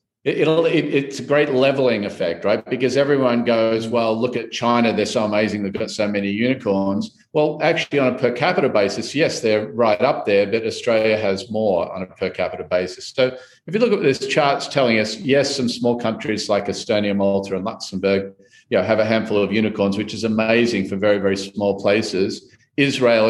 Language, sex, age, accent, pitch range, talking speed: English, male, 50-69, Australian, 105-130 Hz, 200 wpm